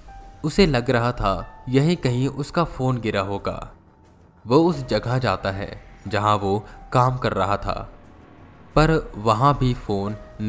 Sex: male